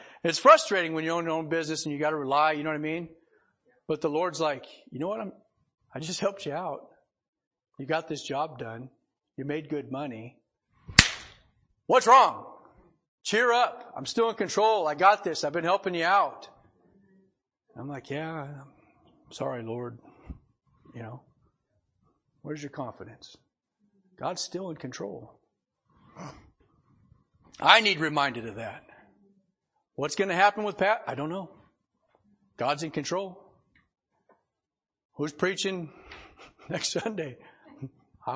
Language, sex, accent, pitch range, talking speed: English, male, American, 130-185 Hz, 145 wpm